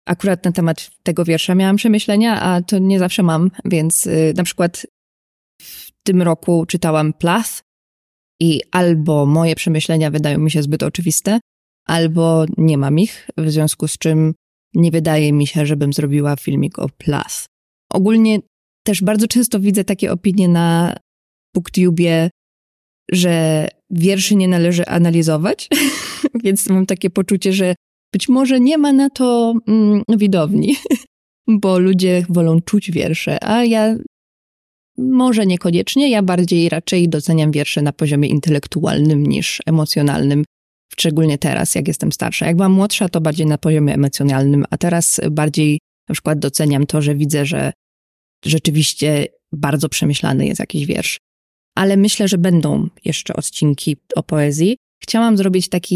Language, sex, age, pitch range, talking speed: Polish, female, 20-39, 155-195 Hz, 145 wpm